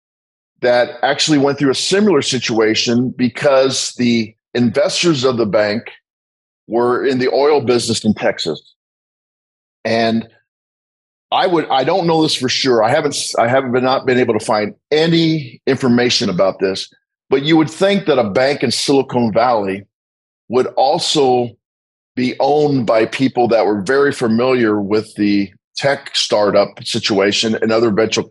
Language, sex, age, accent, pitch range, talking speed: English, male, 50-69, American, 110-140 Hz, 150 wpm